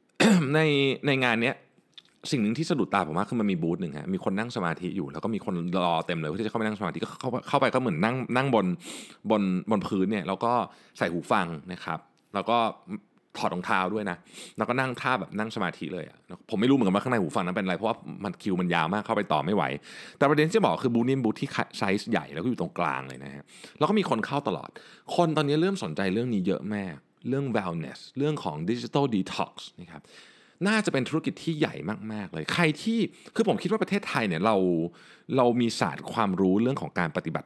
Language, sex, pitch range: Thai, male, 90-145 Hz